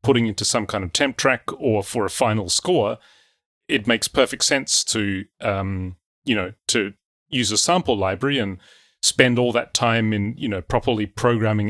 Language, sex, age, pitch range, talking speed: English, male, 30-49, 105-125 Hz, 180 wpm